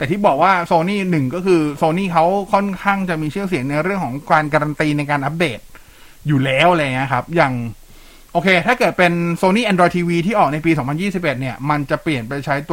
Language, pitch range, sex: Thai, 140-180 Hz, male